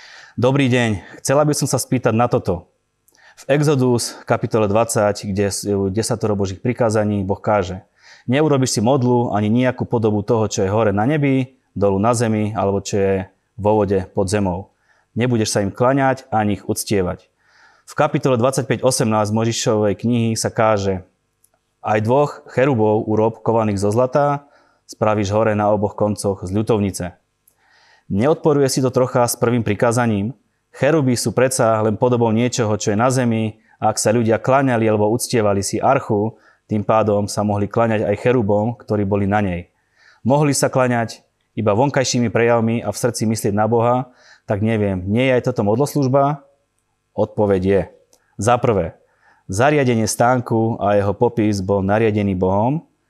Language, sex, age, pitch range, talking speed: Slovak, male, 20-39, 105-125 Hz, 155 wpm